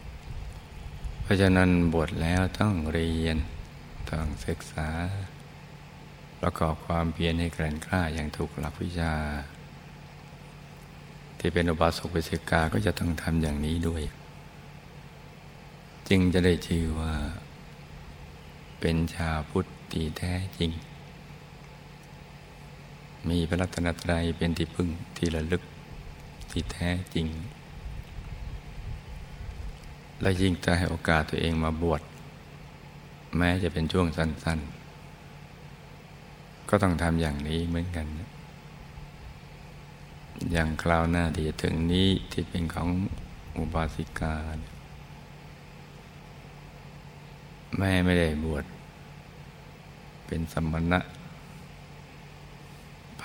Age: 60-79